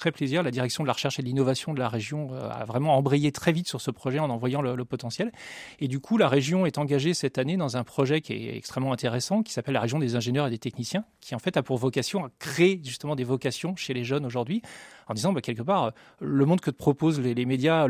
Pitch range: 125-165 Hz